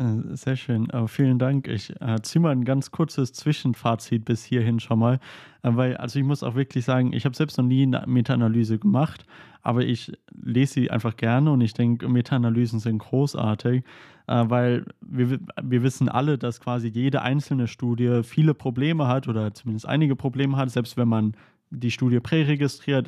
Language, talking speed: German, 175 wpm